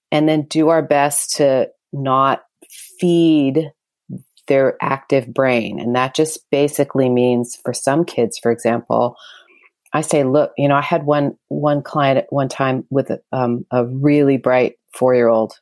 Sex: female